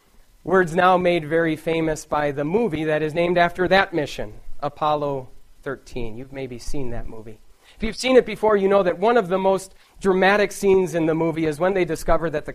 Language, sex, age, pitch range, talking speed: English, male, 30-49, 140-180 Hz, 210 wpm